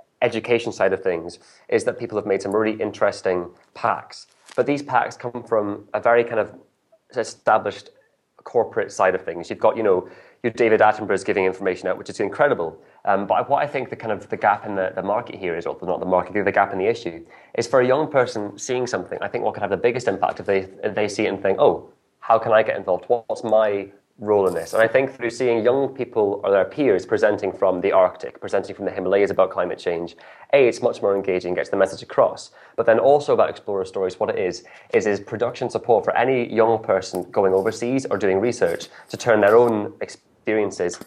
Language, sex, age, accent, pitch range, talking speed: English, male, 20-39, British, 95-125 Hz, 230 wpm